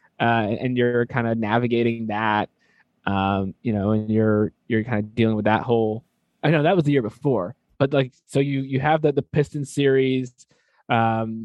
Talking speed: 195 wpm